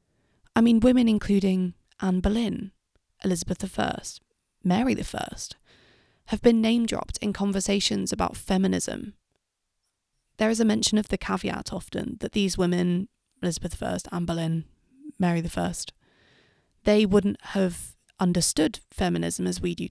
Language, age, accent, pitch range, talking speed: English, 20-39, British, 170-215 Hz, 130 wpm